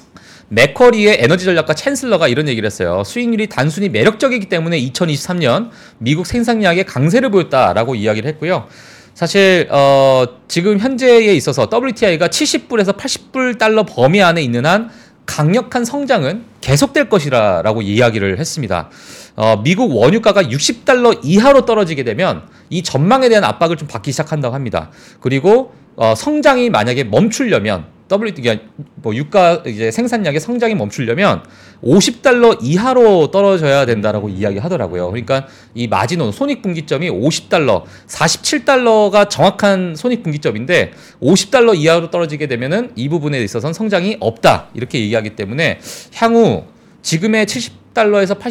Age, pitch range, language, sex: 40-59, 135-220 Hz, Korean, male